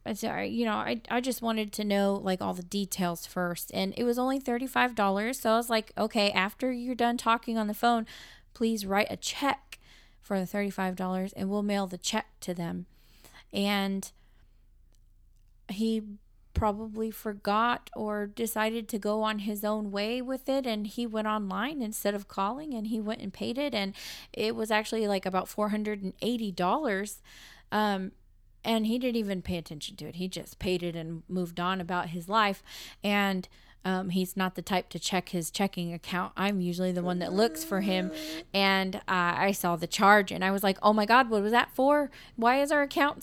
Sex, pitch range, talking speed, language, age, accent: female, 185-225 Hz, 195 wpm, English, 20-39, American